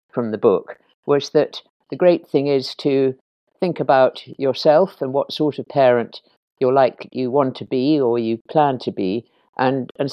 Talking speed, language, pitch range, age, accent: 185 wpm, English, 125-150 Hz, 50-69, British